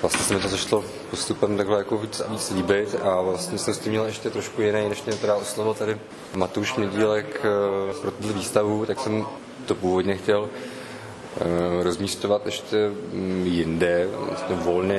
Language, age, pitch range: Czech, 20-39, 95-105 Hz